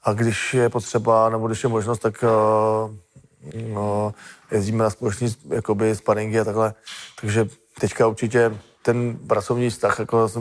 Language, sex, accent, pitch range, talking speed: Czech, male, native, 115-130 Hz, 145 wpm